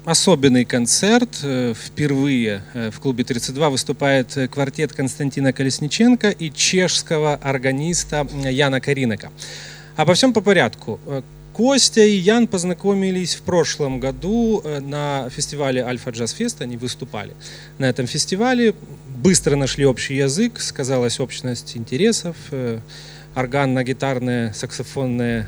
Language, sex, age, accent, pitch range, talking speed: Russian, male, 30-49, native, 135-185 Hz, 110 wpm